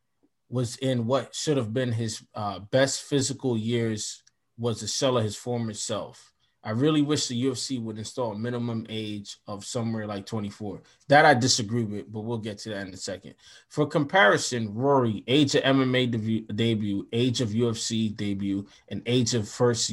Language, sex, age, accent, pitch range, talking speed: English, male, 20-39, American, 115-135 Hz, 180 wpm